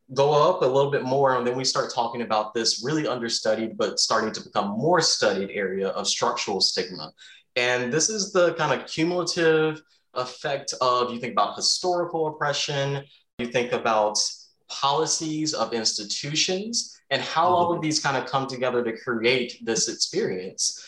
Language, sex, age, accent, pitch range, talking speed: English, male, 20-39, American, 110-140 Hz, 165 wpm